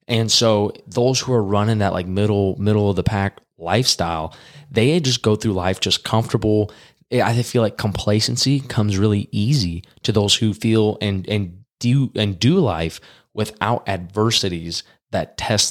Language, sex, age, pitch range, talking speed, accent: English, male, 20-39, 95-115 Hz, 160 wpm, American